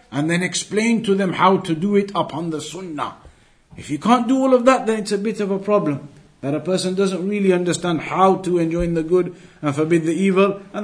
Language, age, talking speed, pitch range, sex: English, 50-69, 235 wpm, 160-220 Hz, male